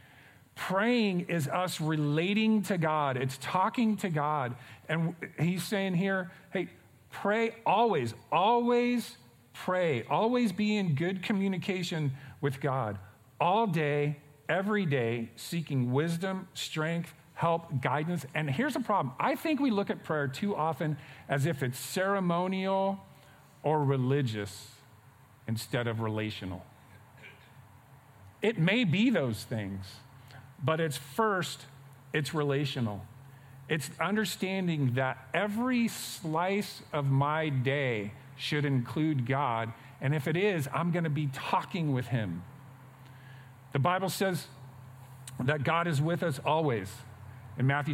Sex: male